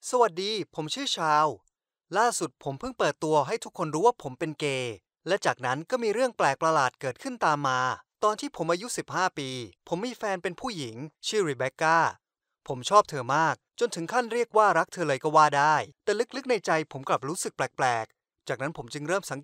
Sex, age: male, 20-39